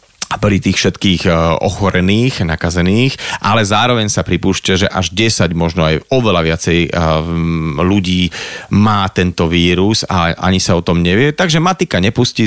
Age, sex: 40-59, male